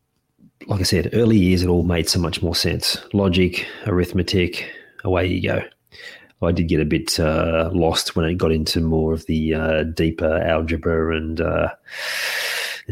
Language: English